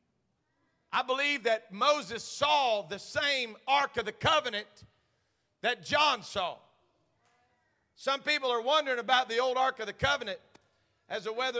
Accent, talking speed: American, 145 wpm